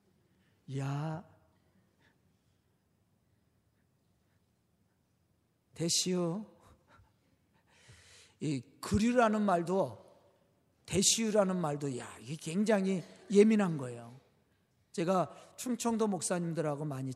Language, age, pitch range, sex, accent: Korean, 50-69, 135-215 Hz, male, native